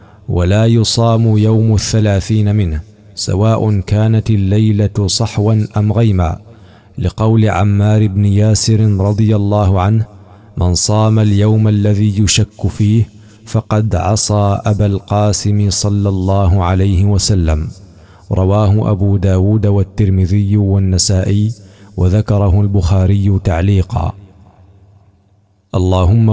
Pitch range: 100-105 Hz